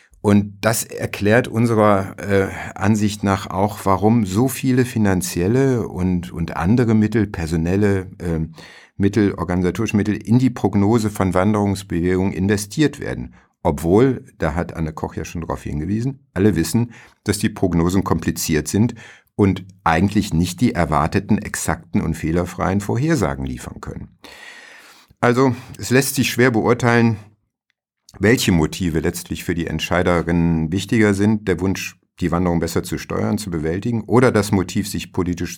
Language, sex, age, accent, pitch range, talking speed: German, male, 50-69, German, 90-110 Hz, 140 wpm